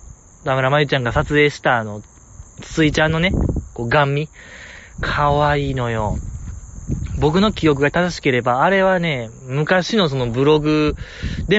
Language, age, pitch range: Japanese, 20-39, 115-165 Hz